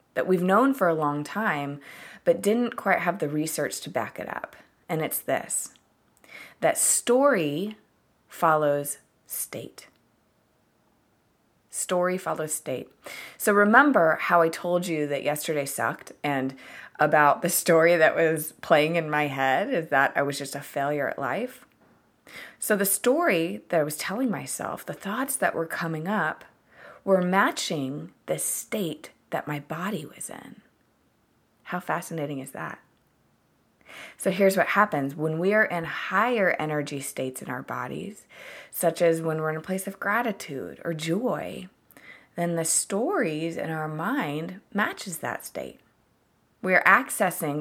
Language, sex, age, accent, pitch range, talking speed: English, female, 30-49, American, 150-195 Hz, 150 wpm